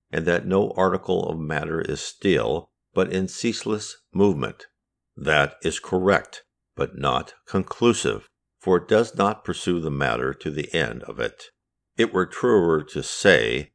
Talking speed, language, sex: 155 wpm, English, male